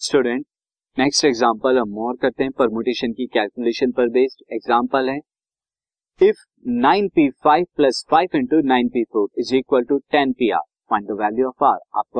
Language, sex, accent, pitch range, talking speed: Hindi, male, native, 120-145 Hz, 170 wpm